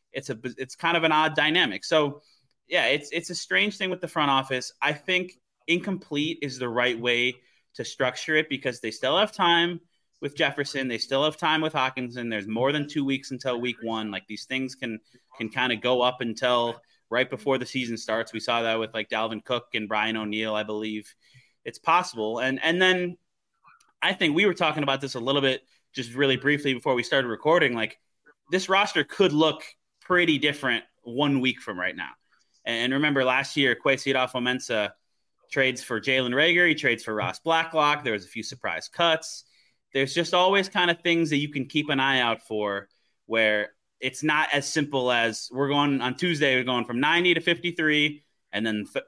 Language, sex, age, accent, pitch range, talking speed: English, male, 20-39, American, 120-155 Hz, 205 wpm